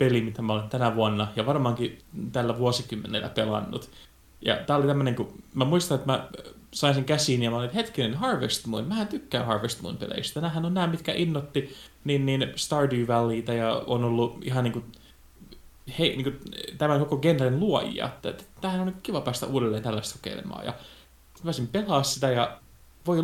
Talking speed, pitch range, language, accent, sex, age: 170 wpm, 115-150 Hz, Finnish, native, male, 20-39